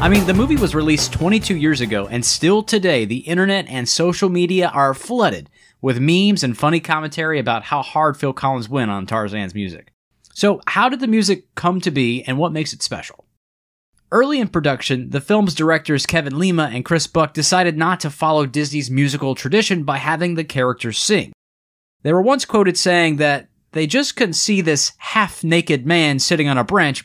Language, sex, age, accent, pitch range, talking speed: English, male, 20-39, American, 130-190 Hz, 190 wpm